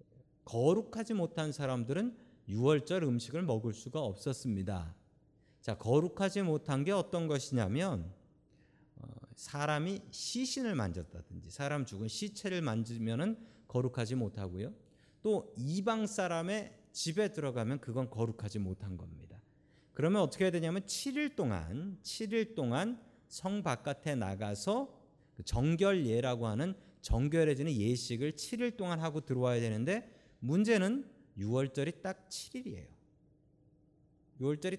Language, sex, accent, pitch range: Korean, male, native, 120-185 Hz